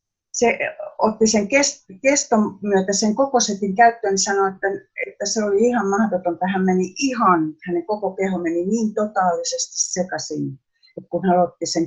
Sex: female